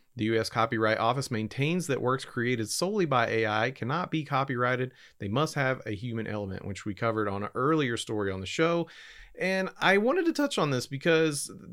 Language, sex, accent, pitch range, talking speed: English, male, American, 115-160 Hz, 195 wpm